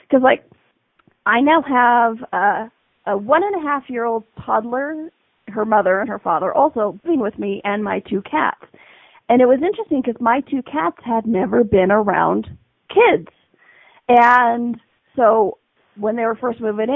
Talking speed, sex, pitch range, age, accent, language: 150 wpm, female, 210-285 Hz, 40-59, American, English